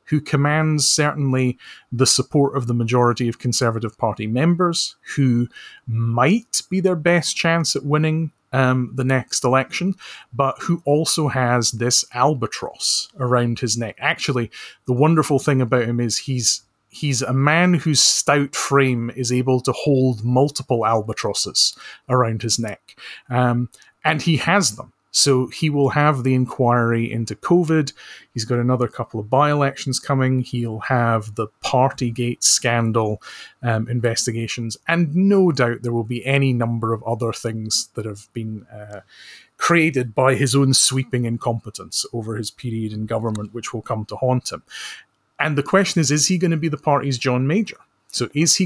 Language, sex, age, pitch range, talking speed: English, male, 30-49, 115-145 Hz, 160 wpm